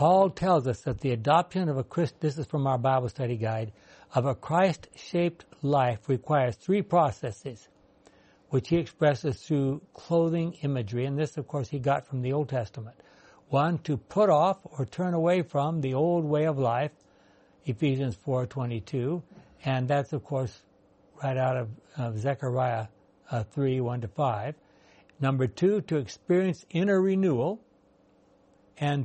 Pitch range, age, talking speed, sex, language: 130-160 Hz, 60-79, 150 wpm, male, English